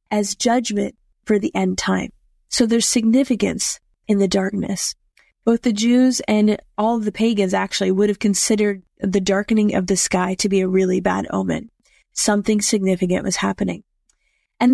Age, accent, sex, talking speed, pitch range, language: 30-49, American, female, 160 wpm, 195-235 Hz, English